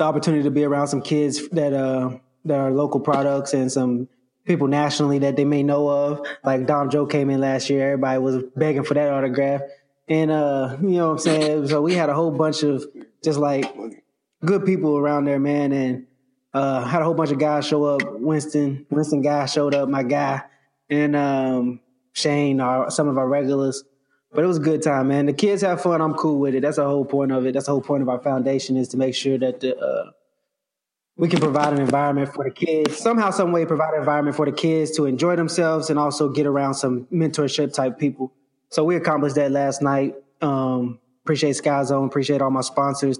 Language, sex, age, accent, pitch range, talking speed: English, male, 20-39, American, 135-150 Hz, 220 wpm